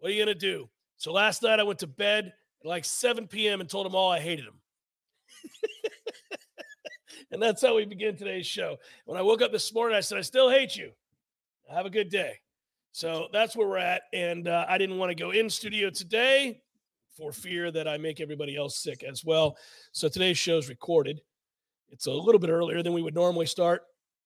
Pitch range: 175-235 Hz